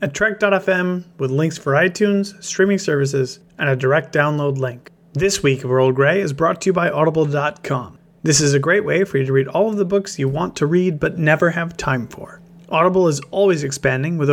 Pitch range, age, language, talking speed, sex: 145-195 Hz, 30-49, English, 215 wpm, male